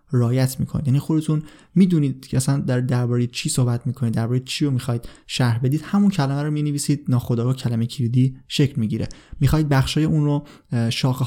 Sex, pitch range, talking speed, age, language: male, 125-150 Hz, 200 wpm, 20-39, Persian